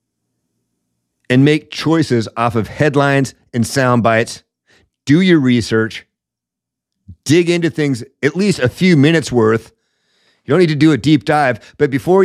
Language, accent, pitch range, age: English, American, 125-180 Hz, 50-69